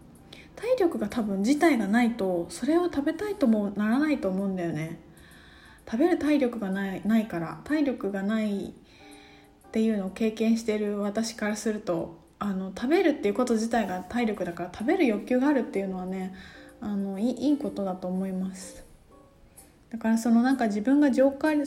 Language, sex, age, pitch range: Japanese, female, 20-39, 205-290 Hz